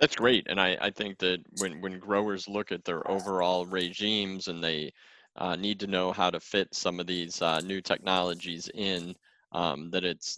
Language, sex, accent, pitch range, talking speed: English, male, American, 90-100 Hz, 195 wpm